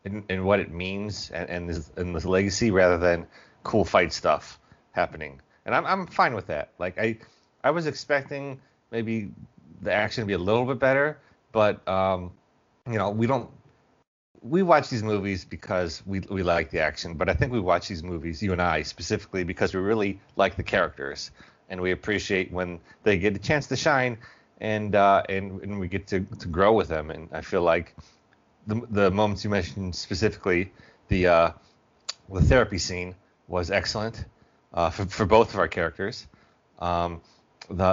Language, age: English, 30-49